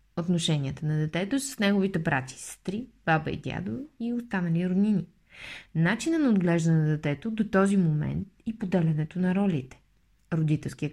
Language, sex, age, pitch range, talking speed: Bulgarian, female, 20-39, 160-205 Hz, 150 wpm